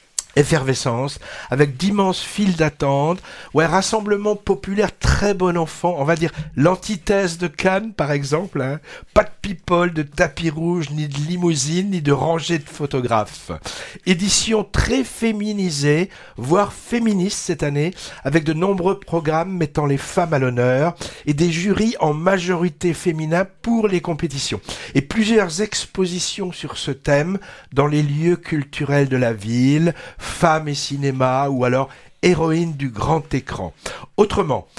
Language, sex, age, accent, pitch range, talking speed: French, male, 60-79, French, 145-185 Hz, 150 wpm